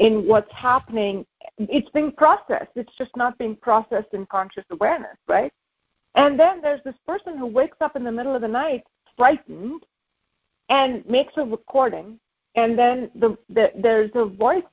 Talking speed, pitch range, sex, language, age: 165 wpm, 225-300 Hz, female, English, 50-69